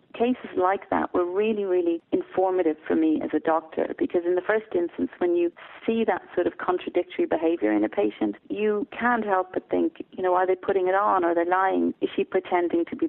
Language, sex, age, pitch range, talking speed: English, female, 40-59, 170-225 Hz, 220 wpm